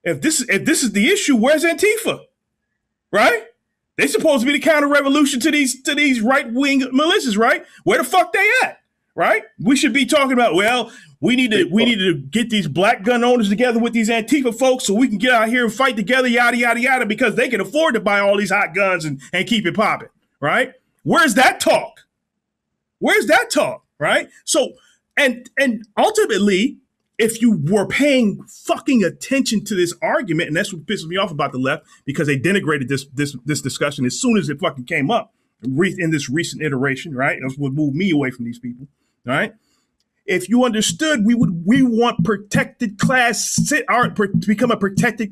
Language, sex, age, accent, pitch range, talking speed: English, male, 30-49, American, 185-260 Hz, 205 wpm